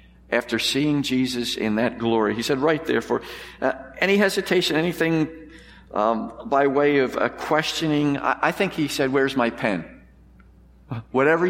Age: 50-69